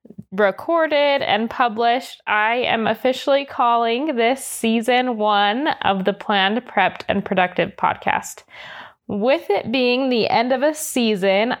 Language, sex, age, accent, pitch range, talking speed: English, female, 10-29, American, 205-250 Hz, 130 wpm